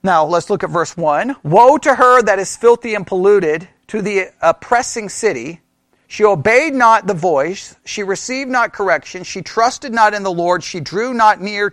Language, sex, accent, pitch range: English, male, American, 200-275 Hz